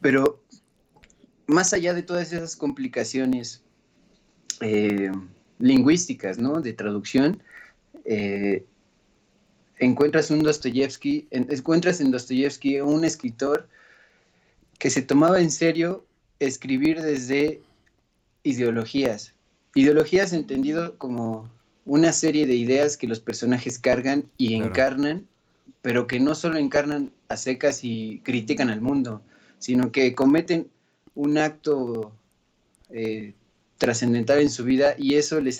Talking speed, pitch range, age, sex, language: 110 wpm, 120-145 Hz, 30-49, male, Spanish